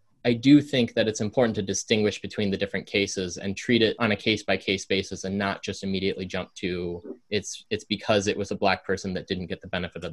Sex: male